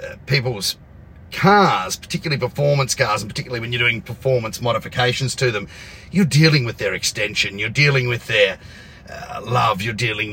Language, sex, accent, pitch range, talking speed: English, male, Australian, 105-145 Hz, 155 wpm